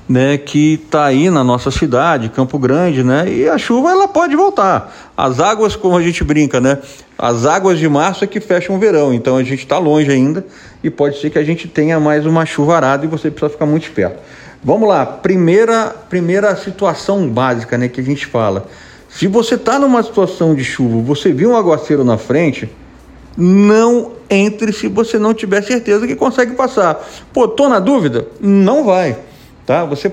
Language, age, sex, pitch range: Portuguese, 40-59, male, 145-210 Hz